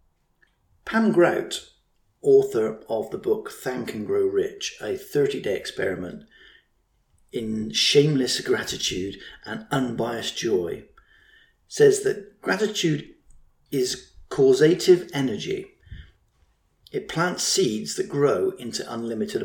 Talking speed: 100 wpm